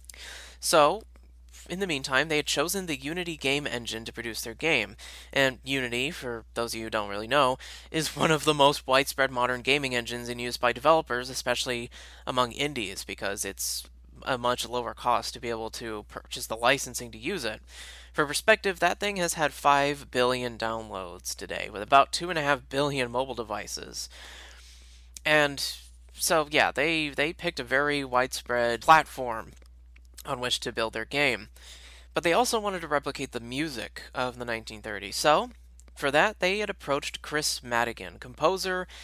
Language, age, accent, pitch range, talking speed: English, 20-39, American, 105-145 Hz, 170 wpm